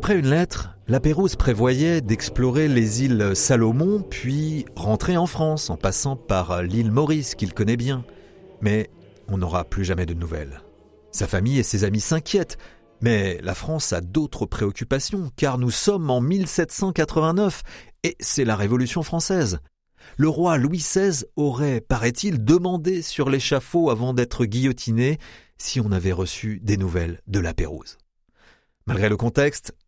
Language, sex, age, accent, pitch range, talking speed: French, male, 40-59, French, 100-150 Hz, 150 wpm